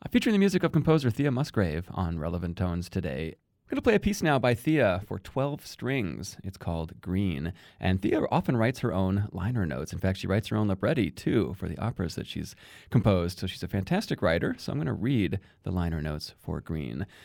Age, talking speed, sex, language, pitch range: 30-49, 220 wpm, male, English, 90-125 Hz